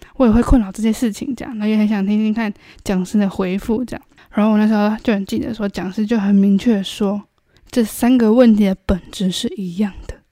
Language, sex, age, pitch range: Chinese, female, 10-29, 200-245 Hz